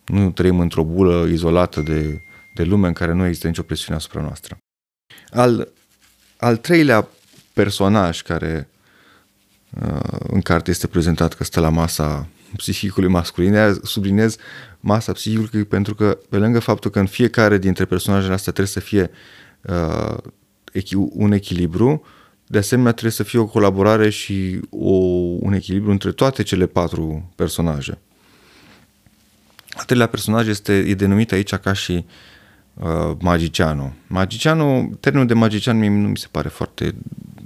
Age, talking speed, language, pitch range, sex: 30-49, 140 wpm, Romanian, 85-105 Hz, male